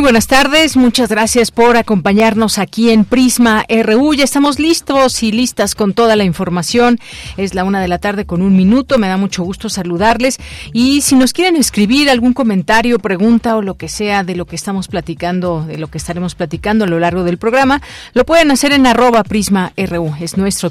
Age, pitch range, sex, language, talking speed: 40-59, 175-230 Hz, female, Spanish, 200 wpm